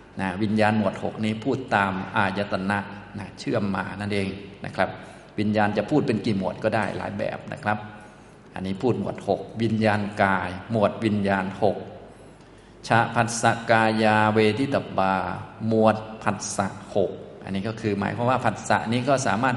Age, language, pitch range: 20-39, Thai, 100-115 Hz